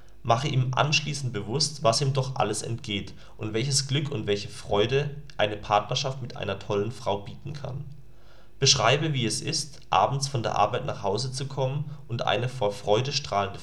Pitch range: 110-140 Hz